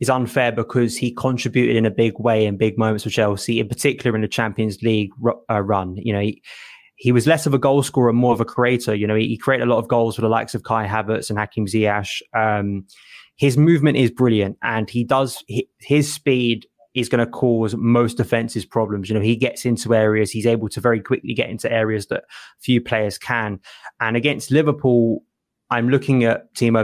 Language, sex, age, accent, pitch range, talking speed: English, male, 20-39, British, 110-125 Hz, 215 wpm